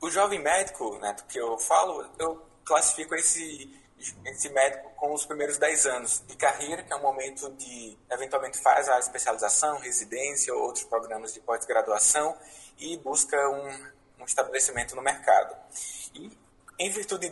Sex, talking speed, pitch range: male, 155 wpm, 135-180 Hz